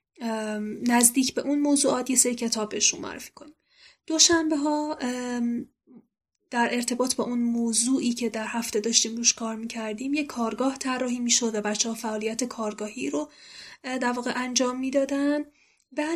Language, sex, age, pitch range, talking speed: Persian, female, 10-29, 225-255 Hz, 140 wpm